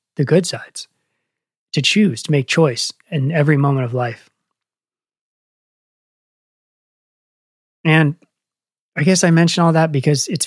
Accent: American